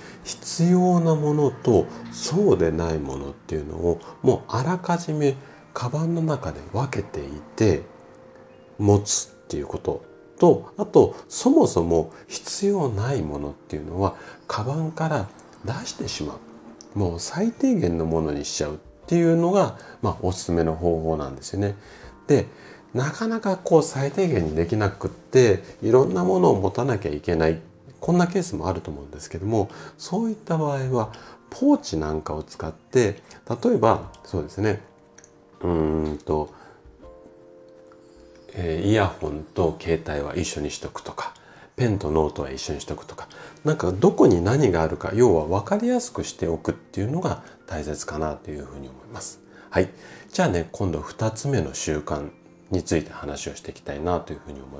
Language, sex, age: Japanese, male, 40-59